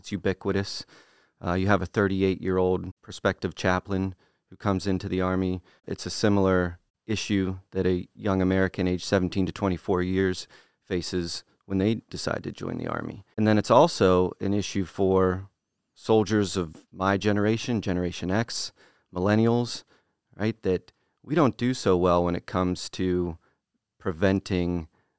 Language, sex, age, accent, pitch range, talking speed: English, male, 30-49, American, 90-100 Hz, 145 wpm